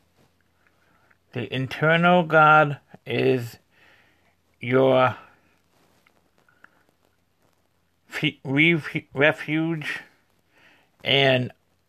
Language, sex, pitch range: English, male, 110-150 Hz